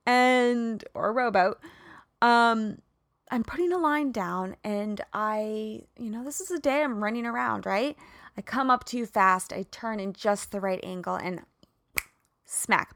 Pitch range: 195-260 Hz